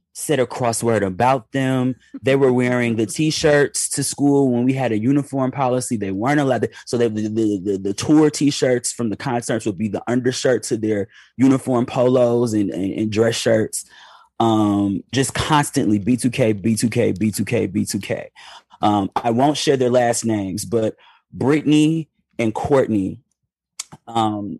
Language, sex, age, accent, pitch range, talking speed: English, male, 20-39, American, 110-135 Hz, 155 wpm